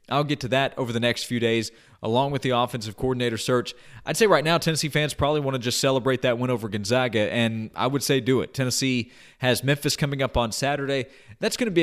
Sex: male